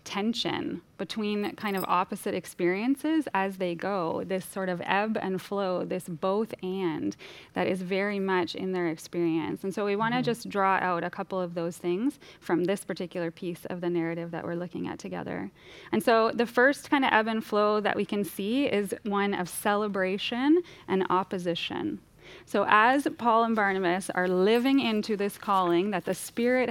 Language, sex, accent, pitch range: English, female, American, 185-225 Hz